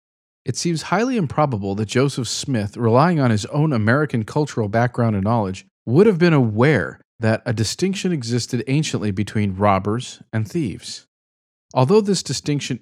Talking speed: 150 wpm